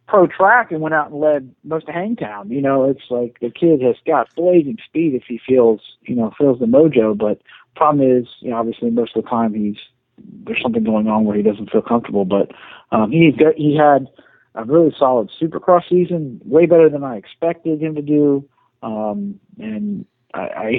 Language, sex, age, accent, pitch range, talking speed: English, male, 40-59, American, 120-160 Hz, 200 wpm